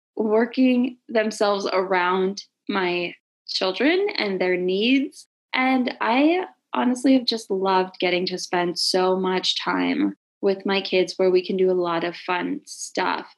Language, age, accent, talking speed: English, 20-39, American, 145 wpm